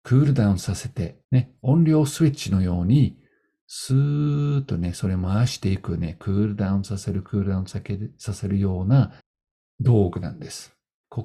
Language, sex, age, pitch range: Japanese, male, 50-69, 95-125 Hz